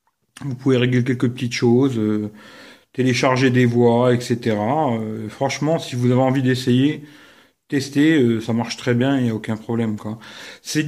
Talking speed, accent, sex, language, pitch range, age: 175 wpm, French, male, English, 125-160 Hz, 40-59